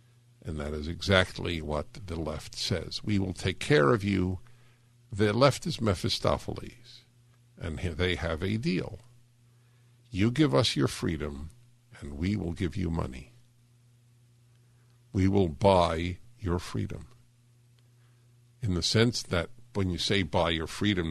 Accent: American